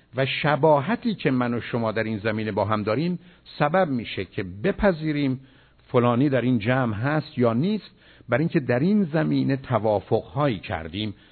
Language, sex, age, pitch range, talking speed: Persian, male, 50-69, 110-150 Hz, 160 wpm